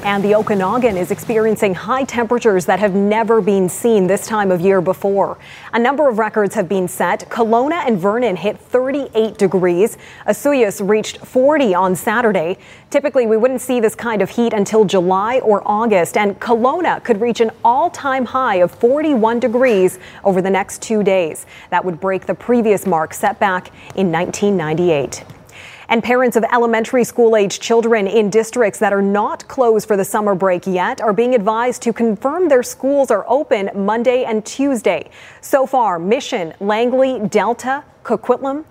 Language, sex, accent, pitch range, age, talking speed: English, female, American, 195-245 Hz, 30-49, 165 wpm